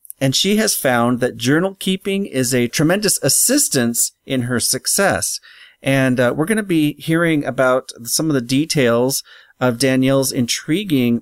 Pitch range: 120-150 Hz